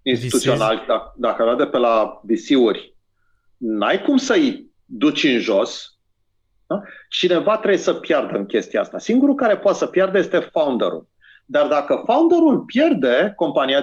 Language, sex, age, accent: Romanian, male, 40-59, native